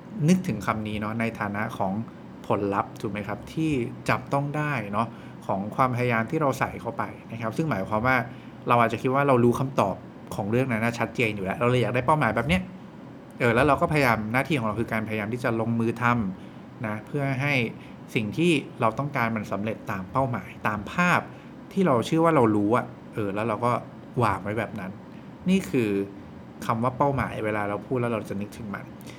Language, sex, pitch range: English, male, 110-145 Hz